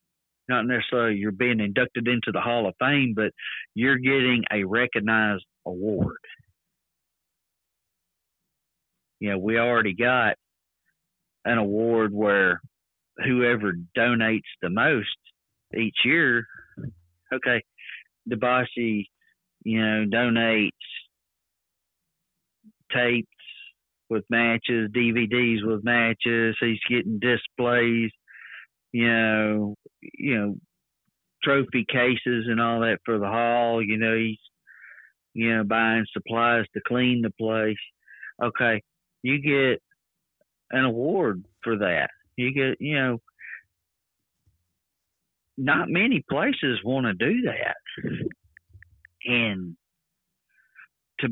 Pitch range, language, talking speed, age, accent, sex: 105-120 Hz, English, 100 wpm, 50-69, American, male